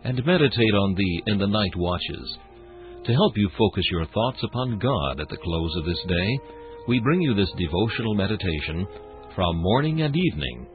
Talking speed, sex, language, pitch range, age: 180 wpm, male, English, 85-115 Hz, 60-79